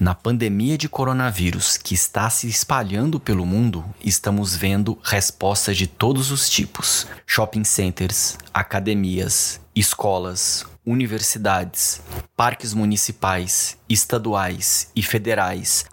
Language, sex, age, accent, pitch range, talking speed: Portuguese, male, 20-39, Brazilian, 100-125 Hz, 100 wpm